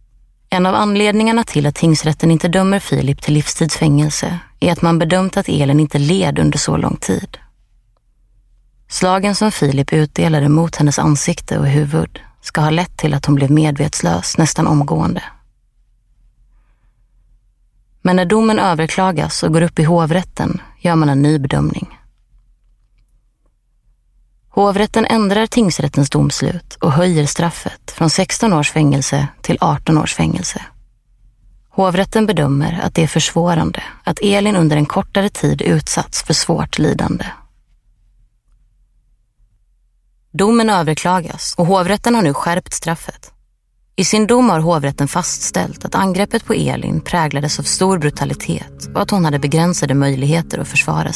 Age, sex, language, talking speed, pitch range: 30-49, female, Swedish, 135 wpm, 120-180 Hz